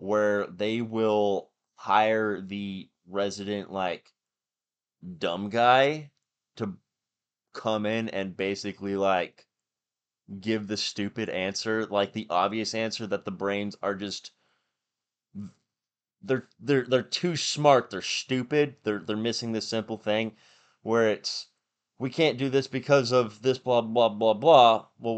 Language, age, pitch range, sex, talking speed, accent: English, 20-39, 100-120 Hz, male, 130 wpm, American